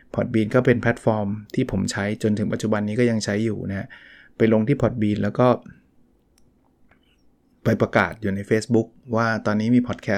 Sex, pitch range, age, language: male, 105-125 Hz, 20-39, Thai